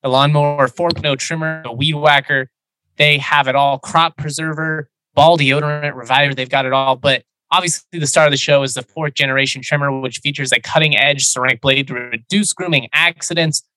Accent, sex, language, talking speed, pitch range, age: American, male, English, 190 wpm, 125-150 Hz, 20-39